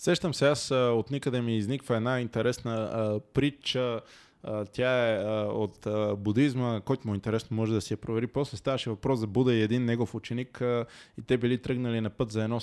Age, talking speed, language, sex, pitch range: 20-39, 215 wpm, Bulgarian, male, 115-140 Hz